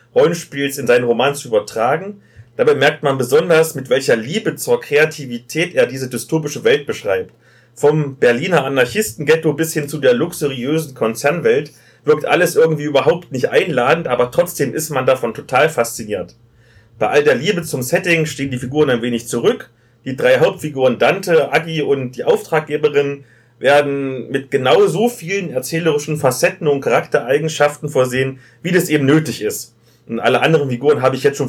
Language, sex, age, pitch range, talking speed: German, male, 30-49, 120-165 Hz, 160 wpm